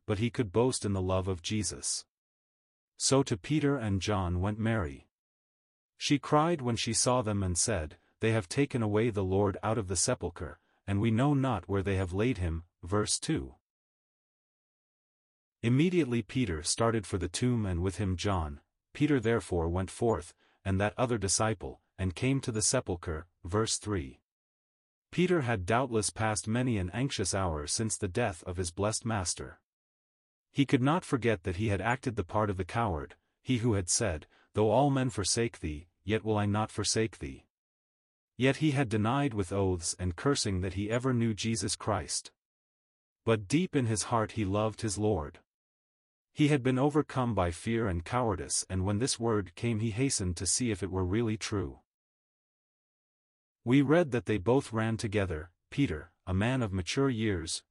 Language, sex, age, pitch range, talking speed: English, male, 40-59, 95-120 Hz, 180 wpm